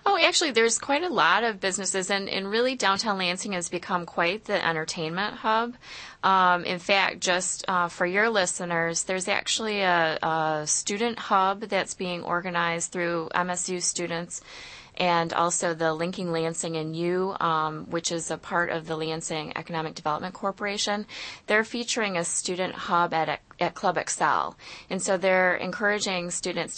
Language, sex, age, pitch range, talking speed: English, female, 20-39, 165-195 Hz, 160 wpm